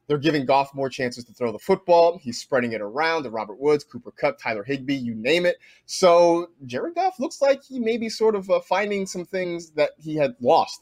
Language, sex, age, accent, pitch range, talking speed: English, male, 30-49, American, 135-185 Hz, 220 wpm